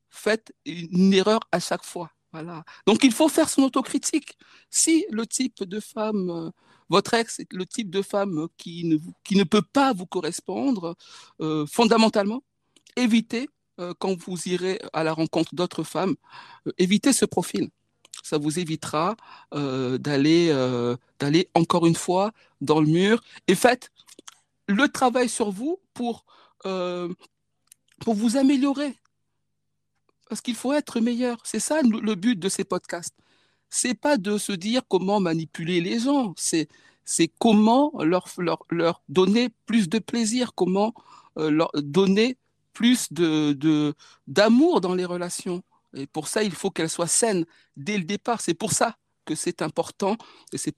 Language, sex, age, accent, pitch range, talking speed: French, male, 60-79, French, 170-235 Hz, 155 wpm